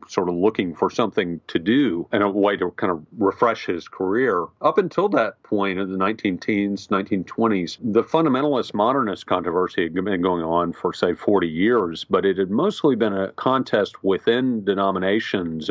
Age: 50-69